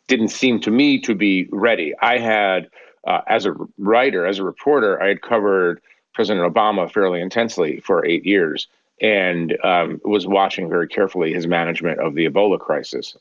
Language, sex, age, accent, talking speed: English, male, 40-59, American, 175 wpm